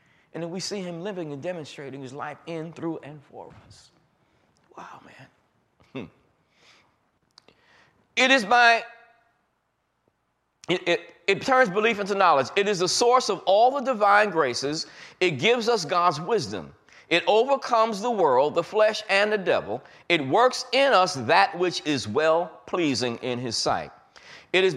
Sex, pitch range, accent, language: male, 145-220 Hz, American, English